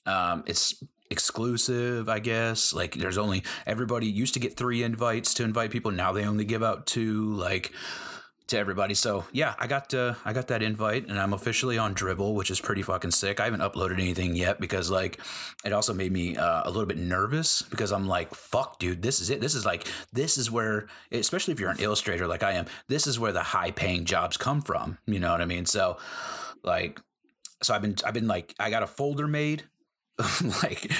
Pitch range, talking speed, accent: 95-125 Hz, 215 wpm, American